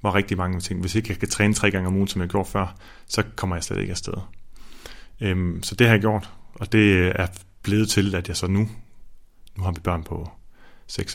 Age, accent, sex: 30-49, native, male